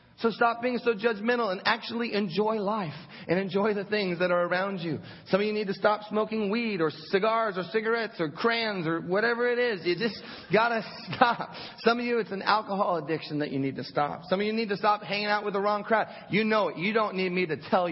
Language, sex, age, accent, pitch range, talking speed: English, male, 30-49, American, 160-215 Hz, 245 wpm